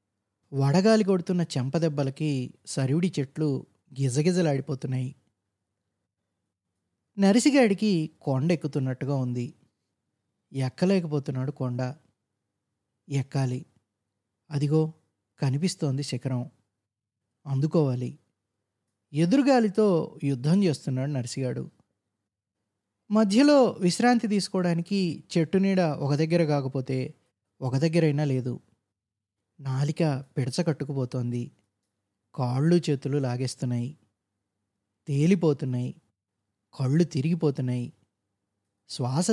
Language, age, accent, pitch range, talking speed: Telugu, 20-39, native, 115-160 Hz, 65 wpm